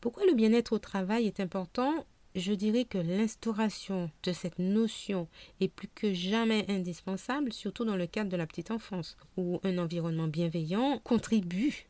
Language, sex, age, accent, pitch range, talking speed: French, female, 40-59, French, 175-230 Hz, 160 wpm